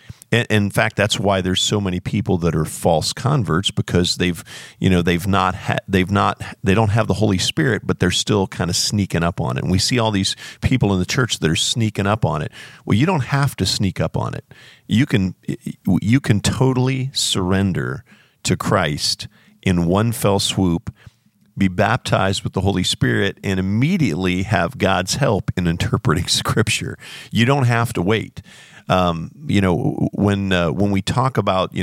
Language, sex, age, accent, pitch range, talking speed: English, male, 50-69, American, 95-115 Hz, 190 wpm